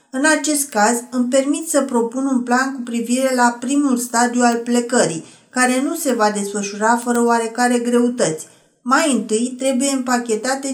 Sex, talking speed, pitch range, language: female, 155 wpm, 230-290 Hz, Romanian